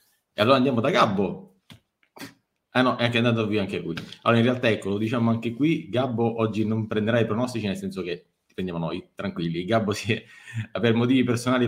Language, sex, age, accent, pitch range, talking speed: Italian, male, 30-49, native, 100-140 Hz, 205 wpm